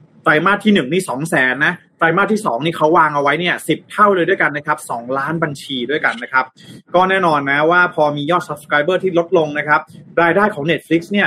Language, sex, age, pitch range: Thai, male, 30-49, 145-185 Hz